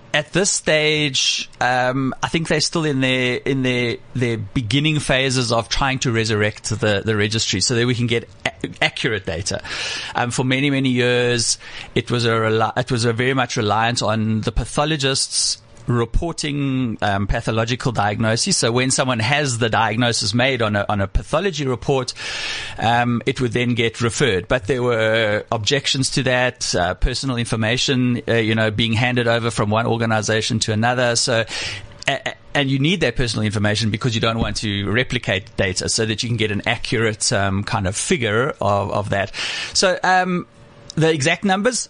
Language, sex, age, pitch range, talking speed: English, male, 30-49, 115-135 Hz, 175 wpm